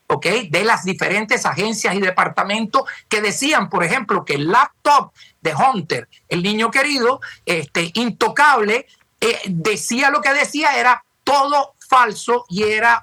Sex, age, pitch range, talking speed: male, 50-69, 180-235 Hz, 145 wpm